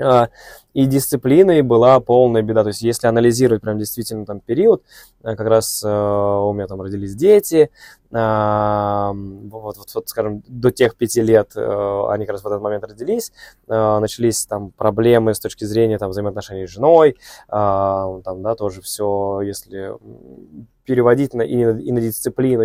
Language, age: Russian, 20-39